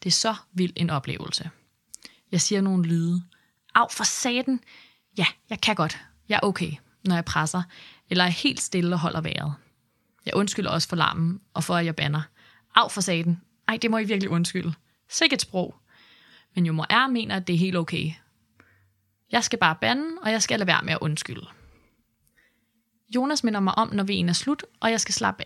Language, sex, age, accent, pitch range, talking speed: Danish, female, 20-39, native, 160-215 Hz, 205 wpm